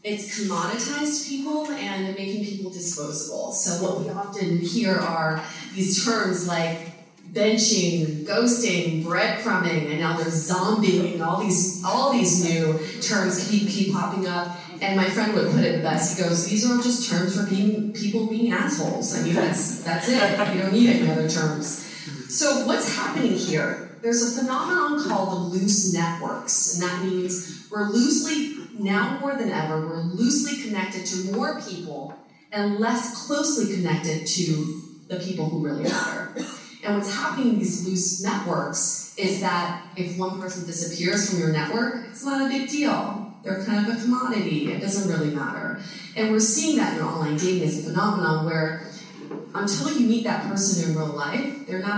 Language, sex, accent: English, female, American